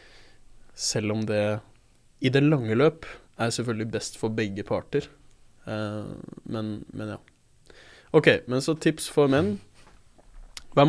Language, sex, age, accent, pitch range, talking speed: English, male, 20-39, Norwegian, 110-135 Hz, 140 wpm